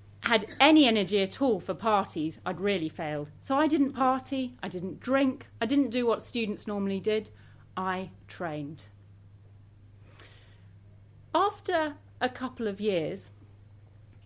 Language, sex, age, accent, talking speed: English, female, 30-49, British, 130 wpm